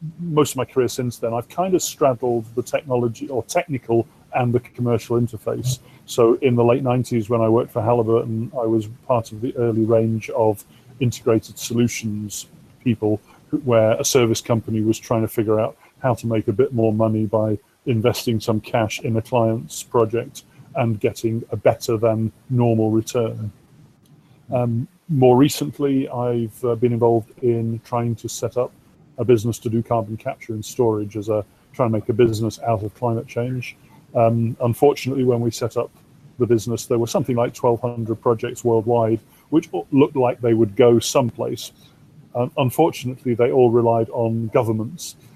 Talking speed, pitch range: 170 wpm, 115-125 Hz